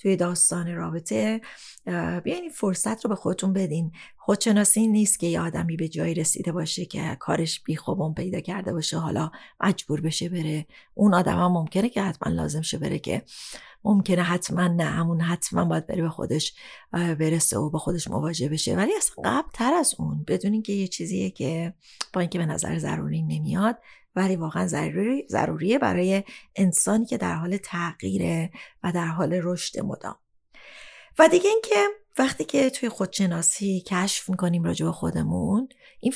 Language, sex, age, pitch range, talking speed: Persian, female, 30-49, 165-205 Hz, 165 wpm